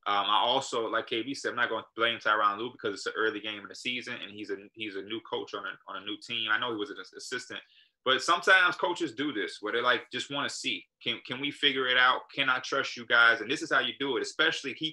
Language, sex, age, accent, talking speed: English, male, 20-39, American, 295 wpm